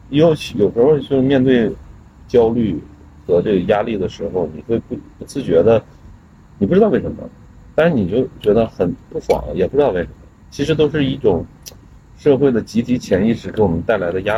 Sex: male